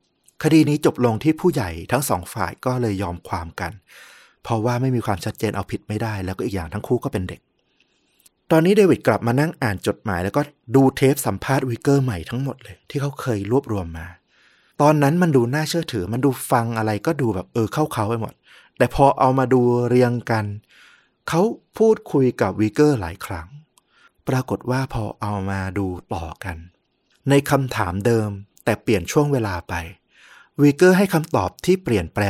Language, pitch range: Thai, 100-140 Hz